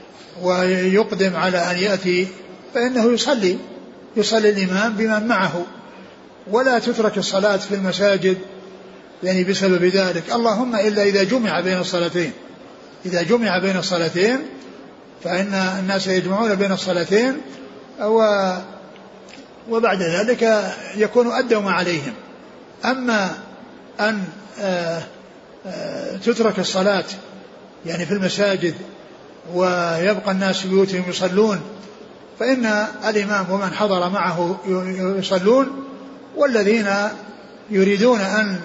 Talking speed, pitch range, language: 90 wpm, 190-215 Hz, Arabic